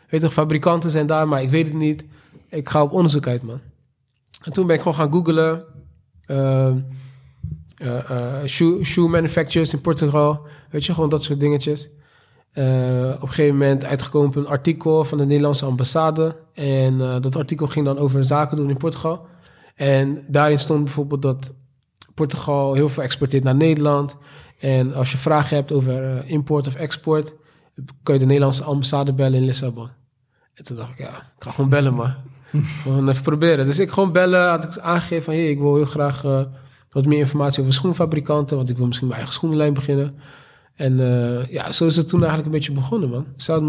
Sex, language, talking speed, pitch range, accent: male, Dutch, 195 wpm, 135-155 Hz, Dutch